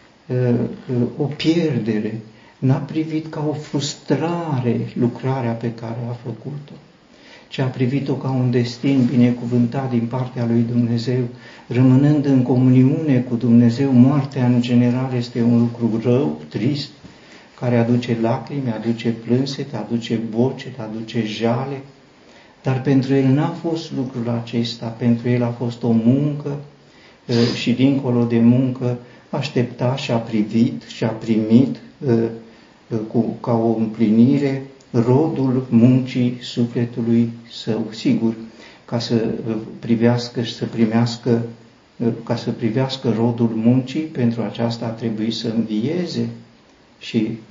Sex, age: male, 50-69